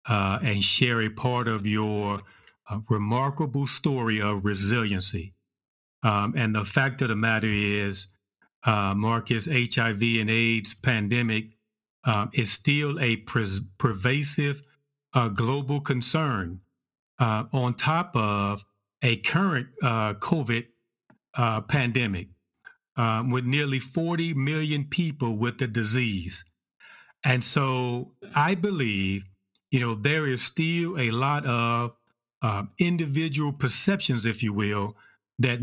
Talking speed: 120 wpm